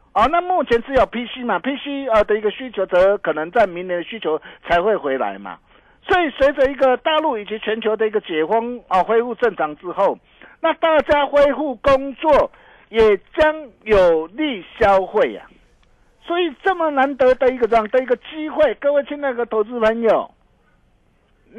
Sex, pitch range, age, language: male, 195-275 Hz, 50-69, Chinese